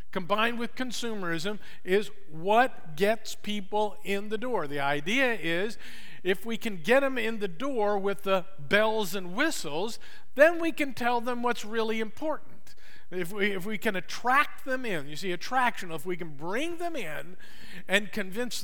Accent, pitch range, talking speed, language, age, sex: American, 175-230 Hz, 165 wpm, English, 50-69, male